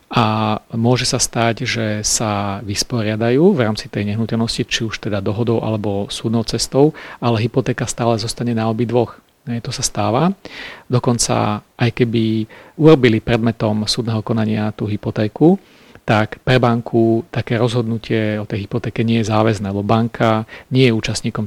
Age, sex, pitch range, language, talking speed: 40-59, male, 110-125 Hz, Slovak, 150 wpm